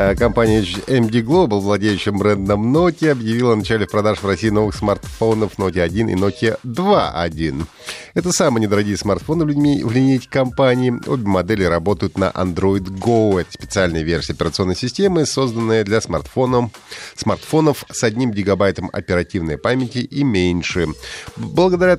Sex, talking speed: male, 135 wpm